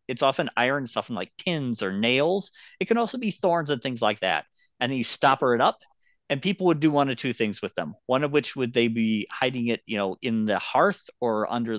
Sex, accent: male, American